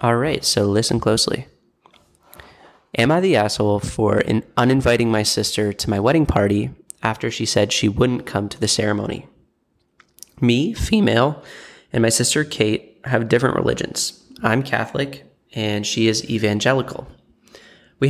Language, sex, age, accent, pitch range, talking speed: English, male, 20-39, American, 110-125 Hz, 145 wpm